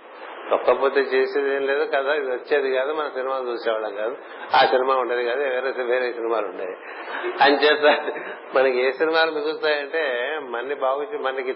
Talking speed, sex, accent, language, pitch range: 150 wpm, male, native, Telugu, 125-155 Hz